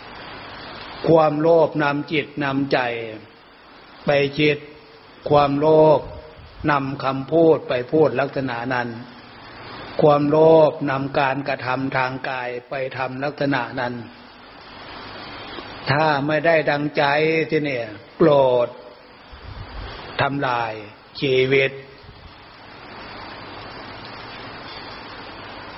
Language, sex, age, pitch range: Thai, male, 60-79, 125-155 Hz